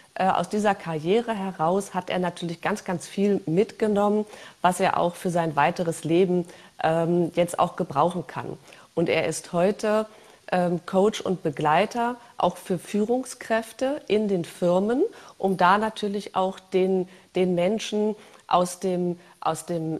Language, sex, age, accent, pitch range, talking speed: German, female, 40-59, German, 175-210 Hz, 145 wpm